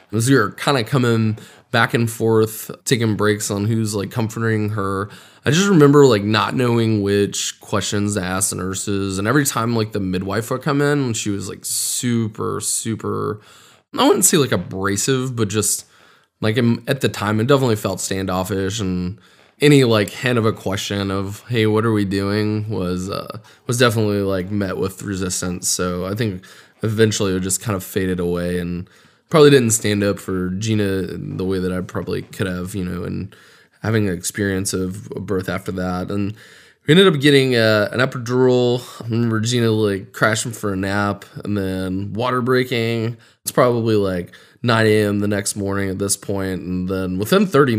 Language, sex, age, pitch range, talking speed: English, male, 20-39, 95-120 Hz, 185 wpm